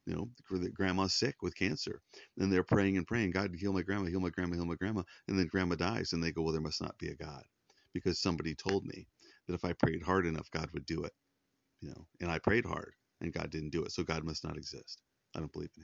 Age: 40-59